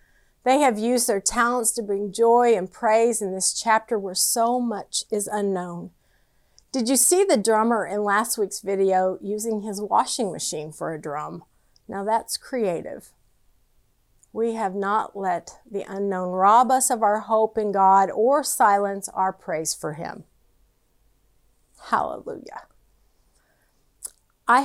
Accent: American